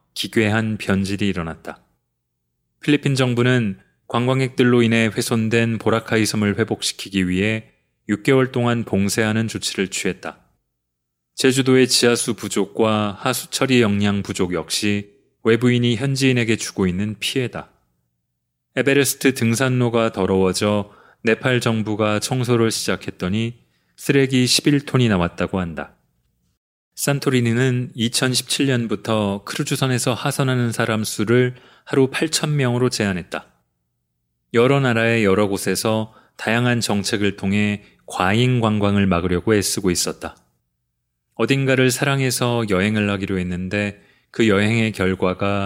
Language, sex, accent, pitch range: Korean, male, native, 100-125 Hz